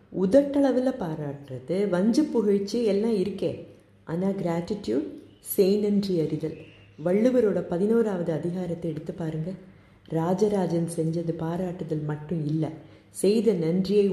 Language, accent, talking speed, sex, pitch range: Tamil, native, 90 wpm, female, 165-225 Hz